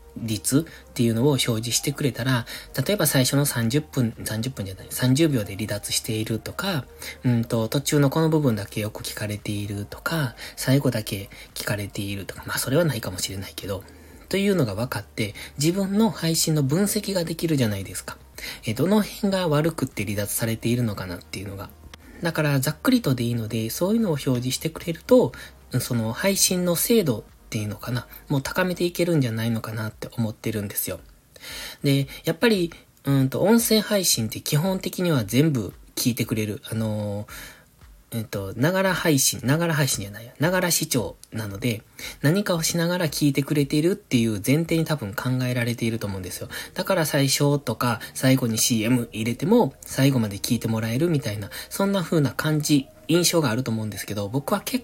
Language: Japanese